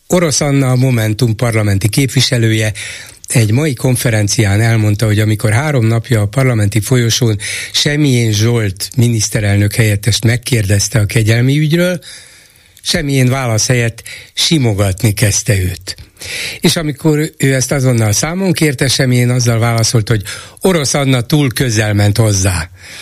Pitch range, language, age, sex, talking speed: 110-135 Hz, Hungarian, 60-79, male, 125 wpm